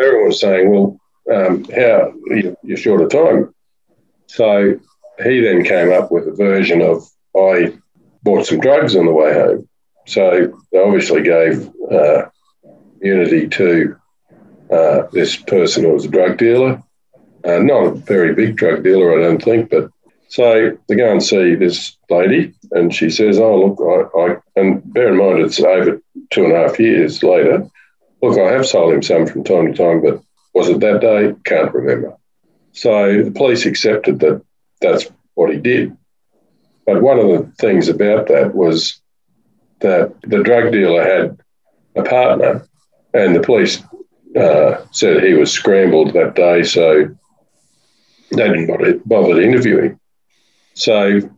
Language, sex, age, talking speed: English, male, 50-69, 160 wpm